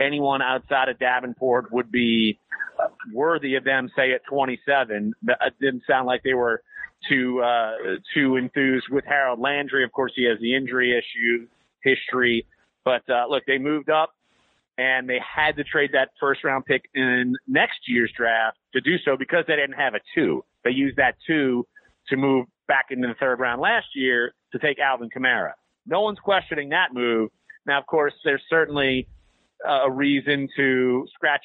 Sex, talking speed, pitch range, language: male, 170 wpm, 120-140 Hz, English